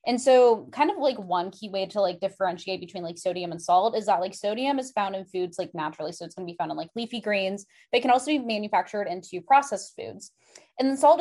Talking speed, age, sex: 250 wpm, 10-29, female